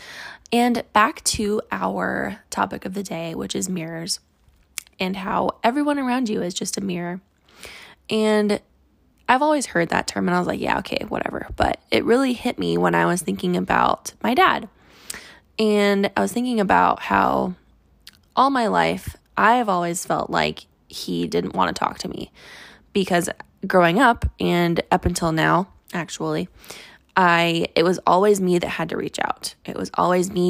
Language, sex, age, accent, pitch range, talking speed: English, female, 20-39, American, 175-215 Hz, 175 wpm